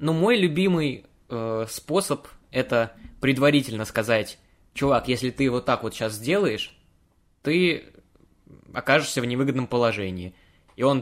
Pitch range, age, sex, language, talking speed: 110-140 Hz, 20-39, male, Russian, 125 wpm